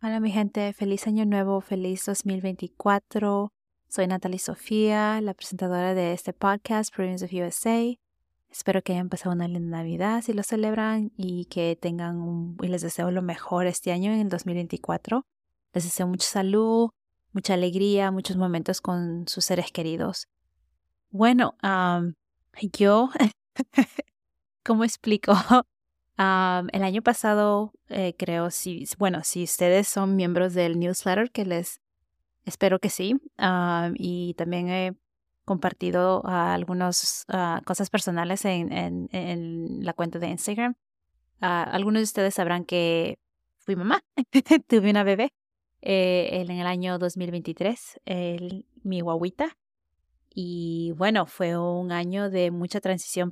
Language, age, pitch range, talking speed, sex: English, 20-39, 175-205 Hz, 140 wpm, female